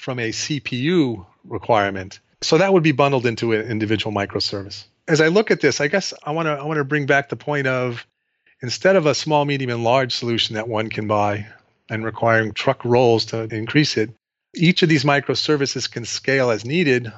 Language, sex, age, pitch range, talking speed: English, male, 40-59, 110-140 Hz, 190 wpm